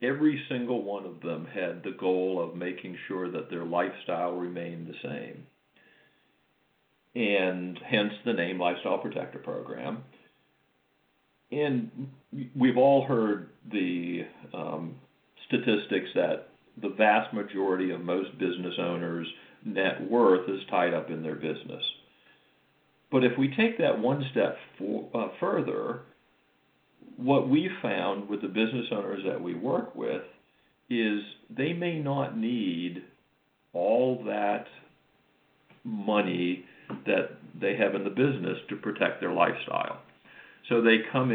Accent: American